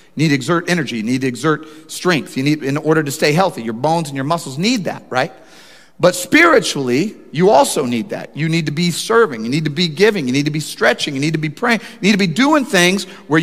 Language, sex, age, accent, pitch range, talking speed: English, male, 40-59, American, 155-205 Hz, 260 wpm